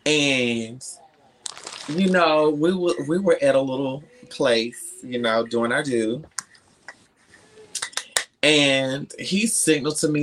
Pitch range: 125-185 Hz